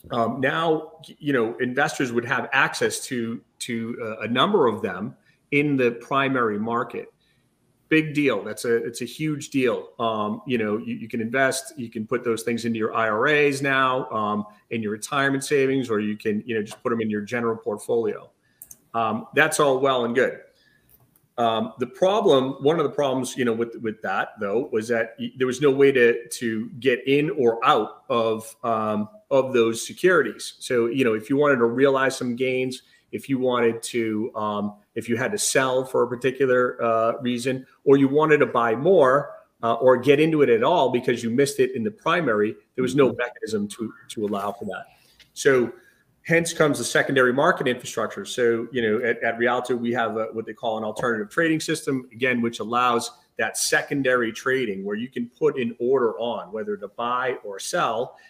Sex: male